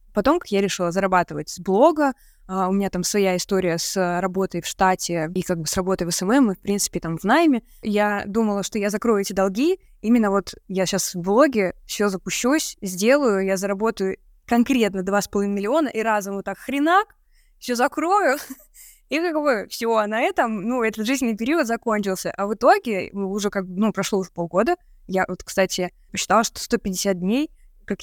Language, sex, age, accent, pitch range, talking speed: Russian, female, 20-39, native, 190-240 Hz, 180 wpm